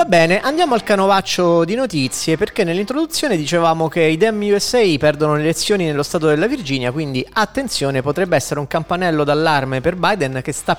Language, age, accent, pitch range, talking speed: Italian, 30-49, native, 140-180 Hz, 180 wpm